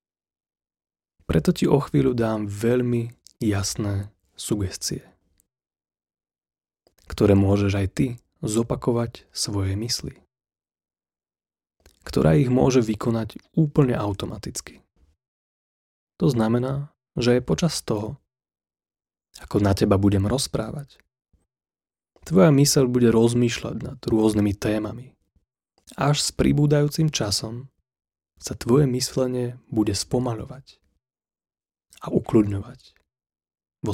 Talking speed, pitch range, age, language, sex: 90 wpm, 100-130 Hz, 20-39, Slovak, male